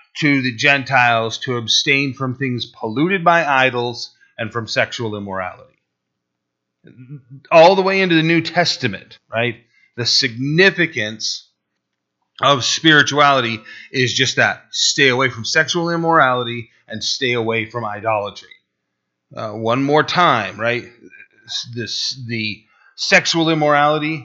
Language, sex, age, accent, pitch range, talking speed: English, male, 30-49, American, 110-140 Hz, 115 wpm